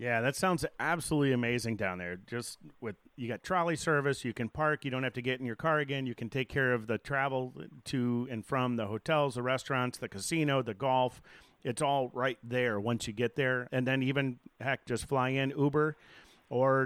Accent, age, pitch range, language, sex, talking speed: American, 40-59, 120-145 Hz, English, male, 215 wpm